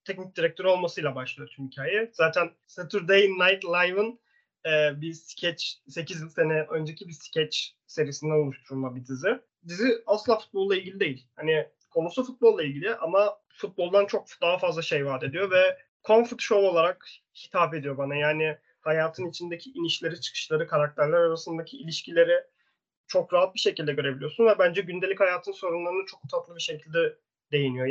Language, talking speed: Turkish, 150 wpm